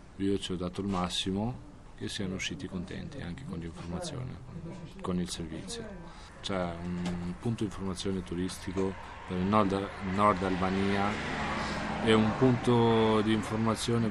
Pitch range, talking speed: 90-105 Hz, 135 wpm